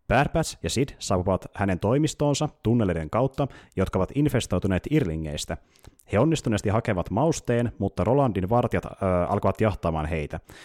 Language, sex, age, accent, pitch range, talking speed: Finnish, male, 30-49, native, 90-125 Hz, 125 wpm